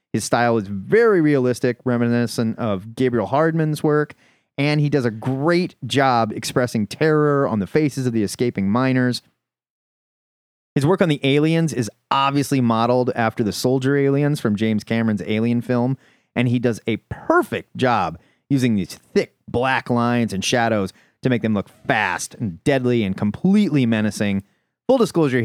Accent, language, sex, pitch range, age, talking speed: American, English, male, 105-140 Hz, 30-49, 160 wpm